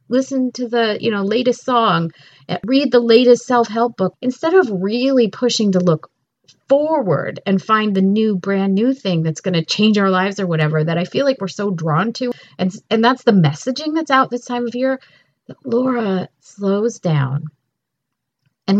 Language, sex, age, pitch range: English, female, 40-59, 165-230 Hz